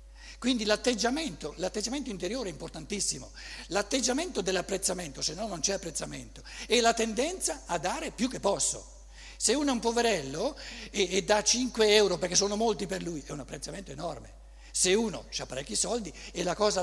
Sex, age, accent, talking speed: male, 50-69, native, 170 wpm